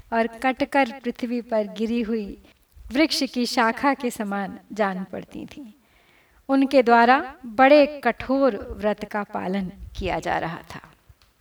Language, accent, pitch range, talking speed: Hindi, native, 260-310 Hz, 130 wpm